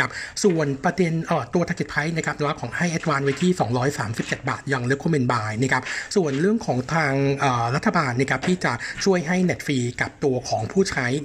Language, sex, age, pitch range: Thai, male, 60-79, 130-160 Hz